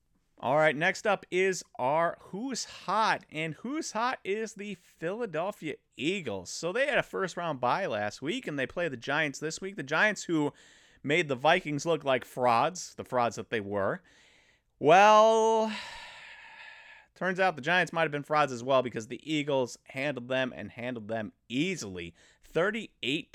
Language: English